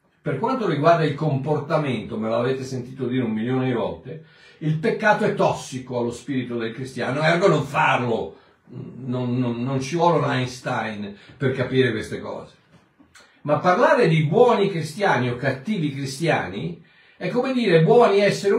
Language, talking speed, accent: Italian, 150 wpm, native